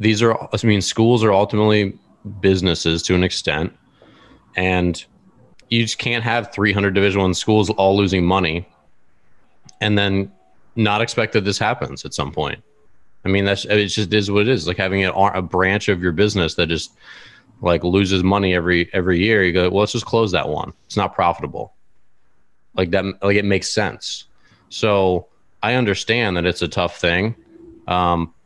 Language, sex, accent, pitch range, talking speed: English, male, American, 90-110 Hz, 170 wpm